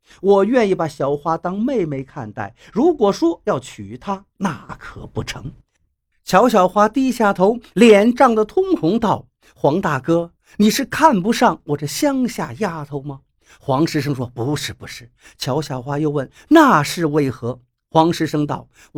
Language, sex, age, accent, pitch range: Chinese, male, 50-69, native, 145-245 Hz